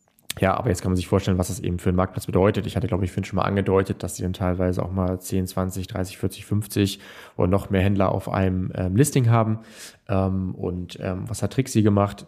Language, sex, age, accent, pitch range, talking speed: German, male, 20-39, German, 90-100 Hz, 235 wpm